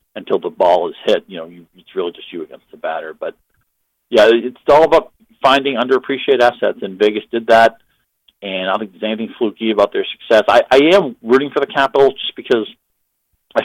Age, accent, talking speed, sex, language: 50-69, American, 200 wpm, male, English